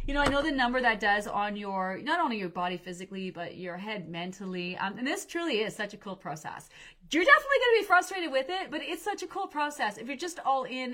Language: English